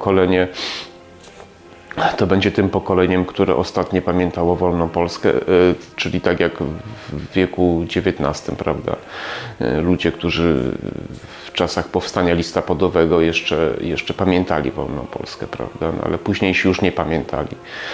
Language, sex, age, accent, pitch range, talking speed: Polish, male, 30-49, native, 90-100 Hz, 115 wpm